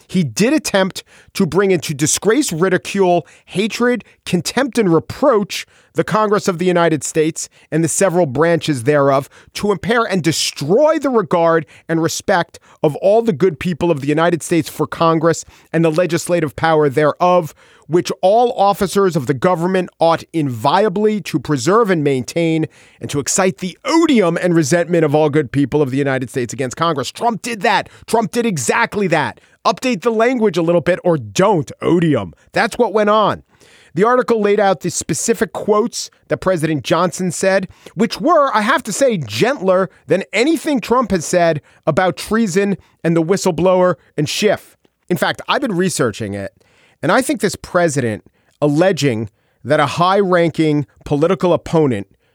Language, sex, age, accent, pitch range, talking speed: English, male, 40-59, American, 150-200 Hz, 165 wpm